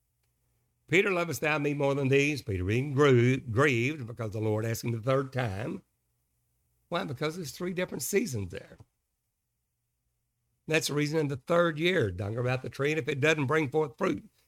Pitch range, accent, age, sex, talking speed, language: 100-135 Hz, American, 60-79, male, 180 wpm, English